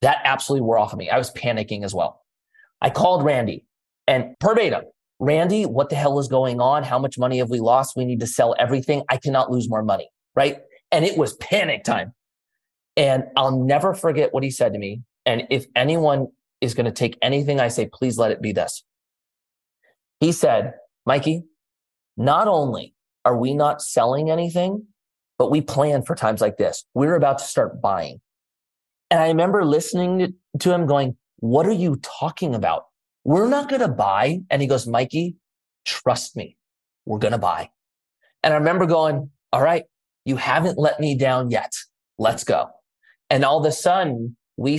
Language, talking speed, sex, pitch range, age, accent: English, 185 wpm, male, 125-165 Hz, 30-49, American